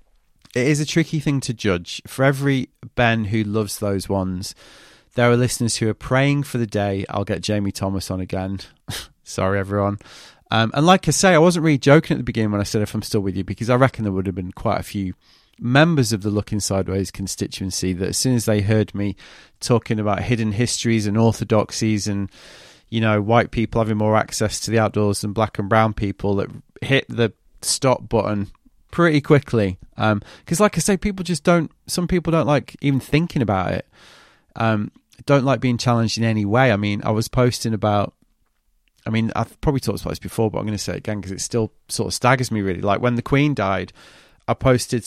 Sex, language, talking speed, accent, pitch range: male, English, 215 wpm, British, 100-130 Hz